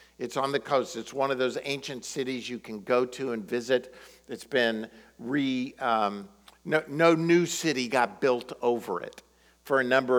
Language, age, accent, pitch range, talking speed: English, 50-69, American, 115-140 Hz, 175 wpm